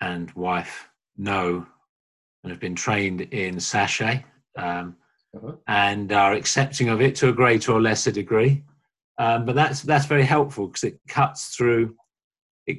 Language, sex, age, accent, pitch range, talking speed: English, male, 40-59, British, 90-115 Hz, 150 wpm